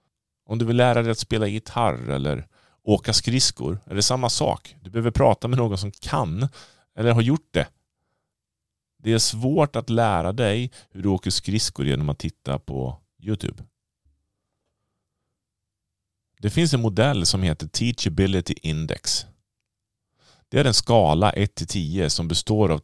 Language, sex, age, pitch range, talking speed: Swedish, male, 30-49, 85-115 Hz, 150 wpm